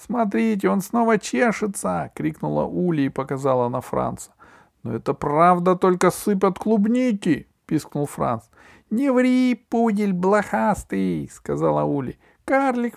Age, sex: 50-69, male